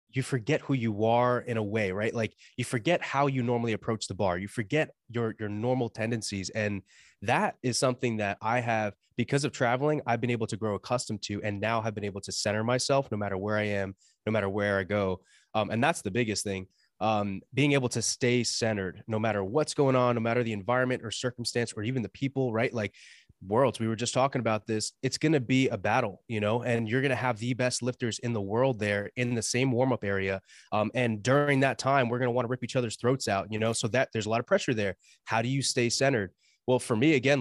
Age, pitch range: 20-39, 105-130 Hz